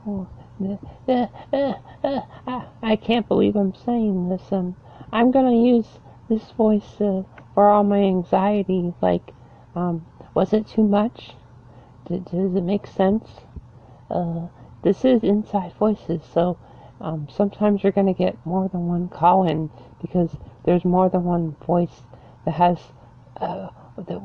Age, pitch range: 50-69, 175-230 Hz